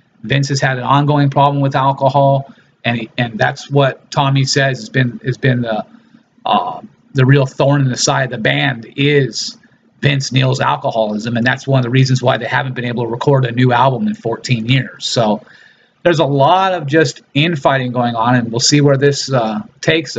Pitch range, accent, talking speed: 130-165 Hz, American, 205 wpm